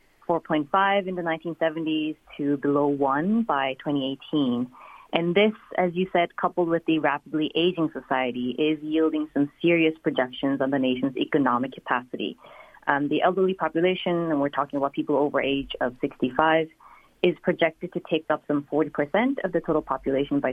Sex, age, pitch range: female, 30-49, 145-175 Hz